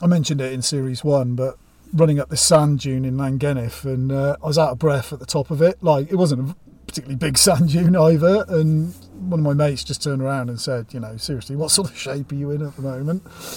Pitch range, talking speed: 125-145 Hz, 255 wpm